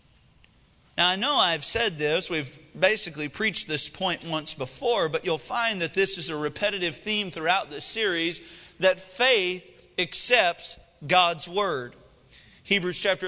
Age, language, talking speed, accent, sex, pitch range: 40-59, English, 145 wpm, American, male, 185-255 Hz